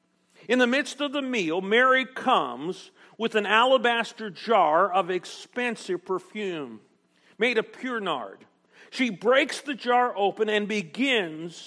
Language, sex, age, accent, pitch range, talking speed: English, male, 50-69, American, 195-250 Hz, 135 wpm